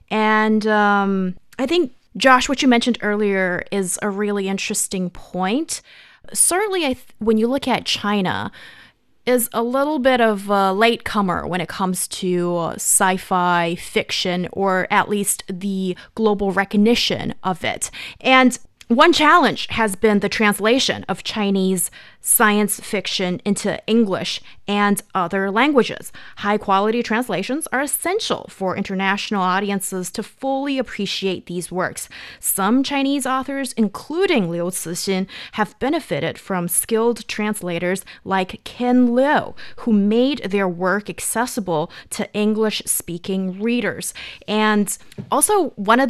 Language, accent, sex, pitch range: English, American, female, 190-230 Hz